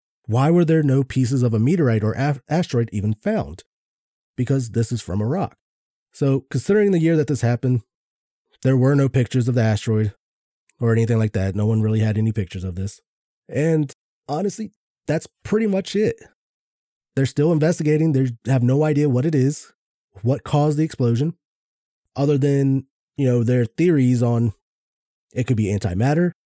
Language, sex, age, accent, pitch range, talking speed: English, male, 20-39, American, 115-150 Hz, 170 wpm